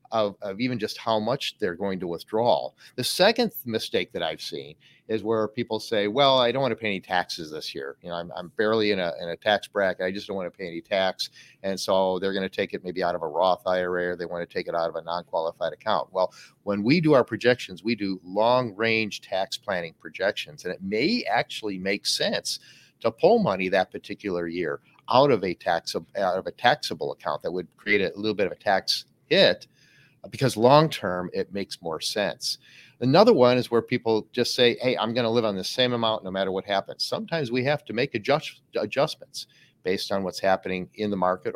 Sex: male